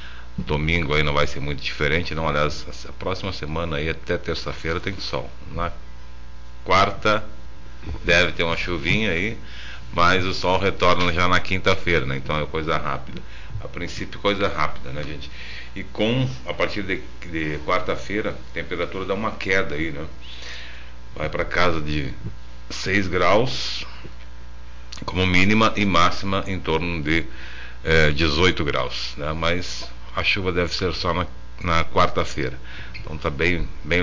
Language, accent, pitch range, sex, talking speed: Portuguese, Brazilian, 70-85 Hz, male, 150 wpm